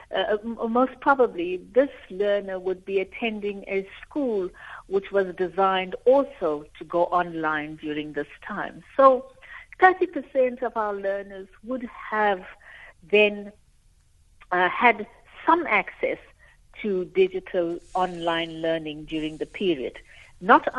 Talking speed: 115 wpm